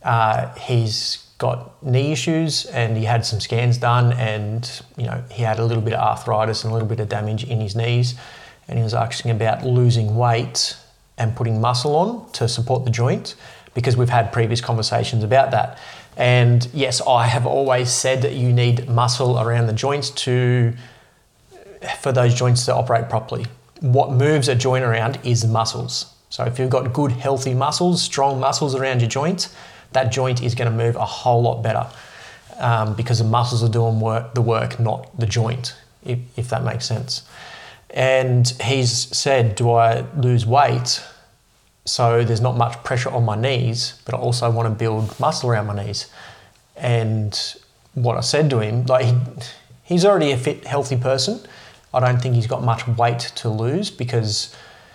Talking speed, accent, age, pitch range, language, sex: 180 wpm, Australian, 30-49, 115-130 Hz, English, male